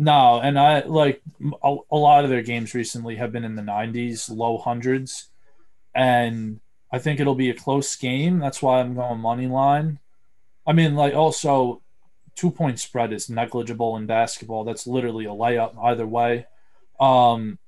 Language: English